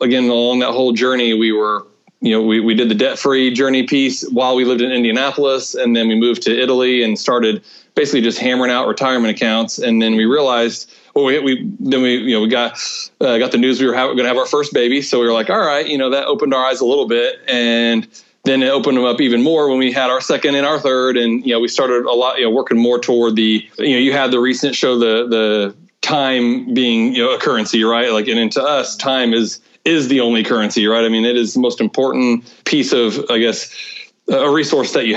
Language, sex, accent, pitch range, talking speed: English, male, American, 115-135 Hz, 255 wpm